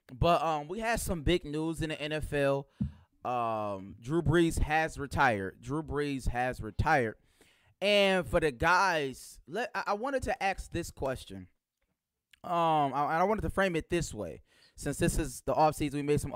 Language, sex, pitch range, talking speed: English, male, 130-180 Hz, 170 wpm